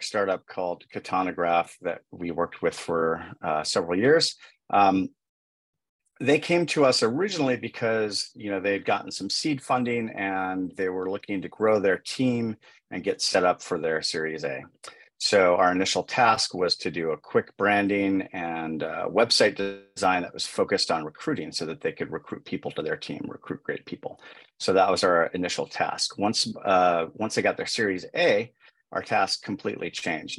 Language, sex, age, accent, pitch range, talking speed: English, male, 40-59, American, 85-110 Hz, 180 wpm